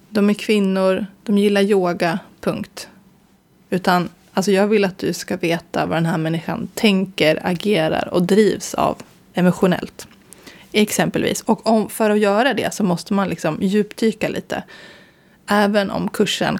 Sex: female